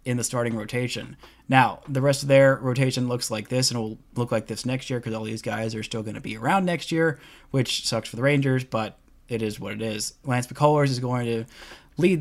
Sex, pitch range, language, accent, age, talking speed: male, 115-130 Hz, English, American, 20-39, 245 wpm